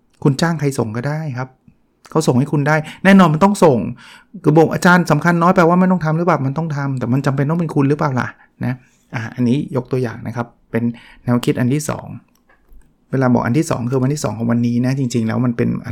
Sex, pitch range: male, 125-160 Hz